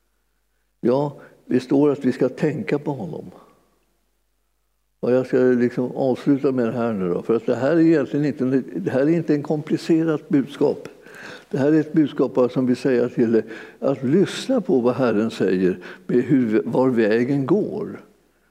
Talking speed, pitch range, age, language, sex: 170 wpm, 125-170 Hz, 60-79, Swedish, male